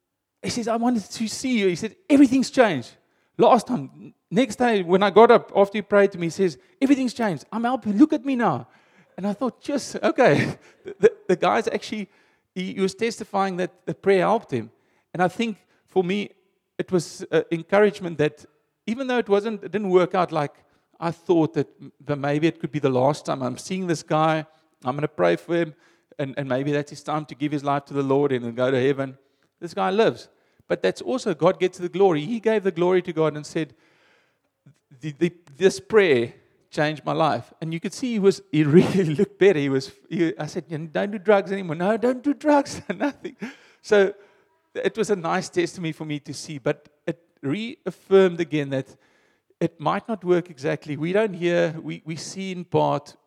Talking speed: 205 wpm